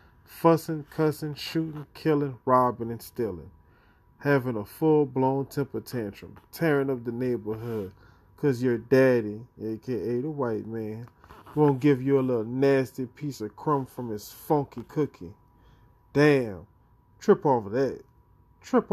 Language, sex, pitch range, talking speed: English, male, 120-150 Hz, 130 wpm